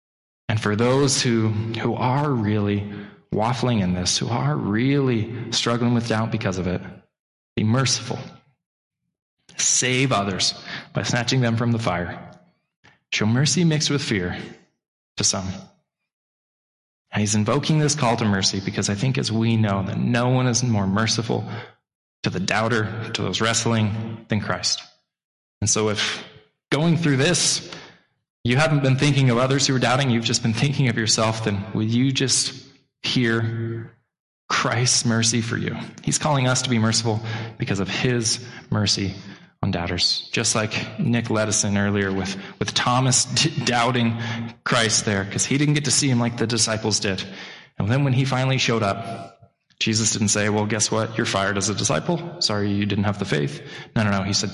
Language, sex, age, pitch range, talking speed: English, male, 20-39, 105-125 Hz, 170 wpm